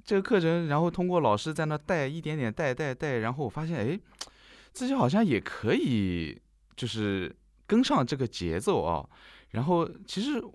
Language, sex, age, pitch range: Chinese, male, 20-39, 95-135 Hz